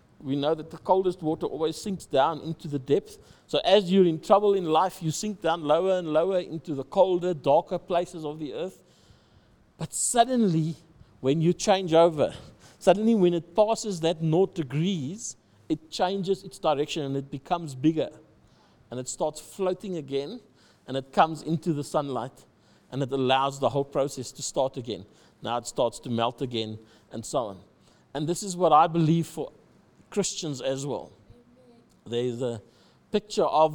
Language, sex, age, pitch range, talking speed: English, male, 60-79, 145-185 Hz, 170 wpm